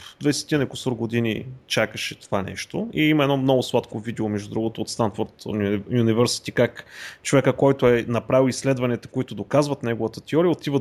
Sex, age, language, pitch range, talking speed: male, 30-49, Bulgarian, 110-145 Hz, 155 wpm